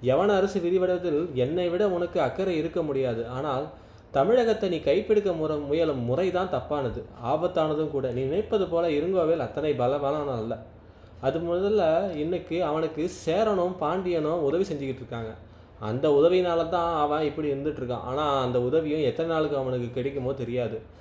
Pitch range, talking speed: 130-170 Hz, 145 wpm